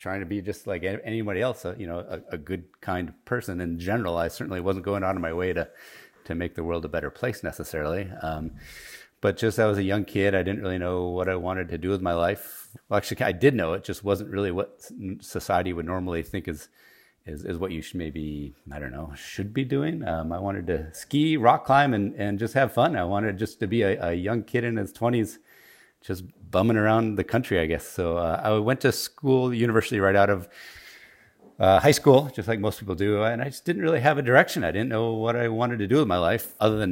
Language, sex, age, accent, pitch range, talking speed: English, male, 40-59, American, 85-110 Hz, 240 wpm